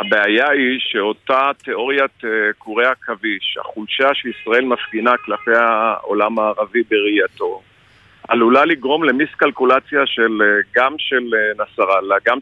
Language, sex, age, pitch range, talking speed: Hebrew, male, 40-59, 110-135 Hz, 100 wpm